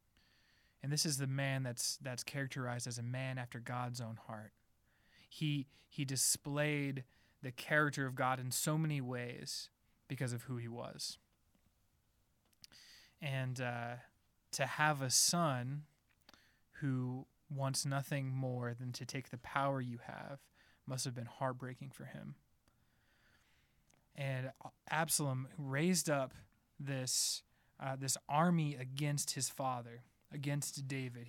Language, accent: English, American